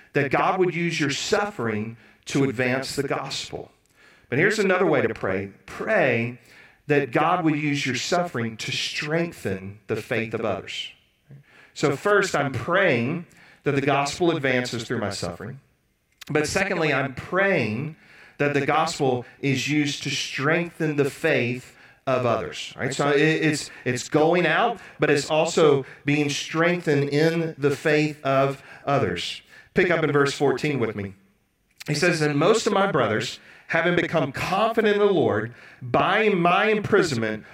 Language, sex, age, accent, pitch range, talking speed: English, male, 40-59, American, 135-170 Hz, 145 wpm